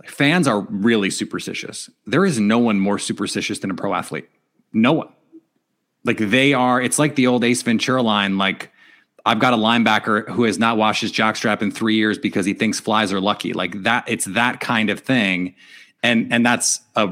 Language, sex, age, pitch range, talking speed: English, male, 30-49, 105-135 Hz, 200 wpm